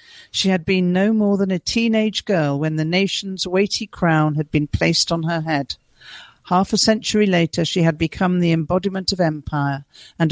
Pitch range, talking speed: 155-195 Hz, 185 wpm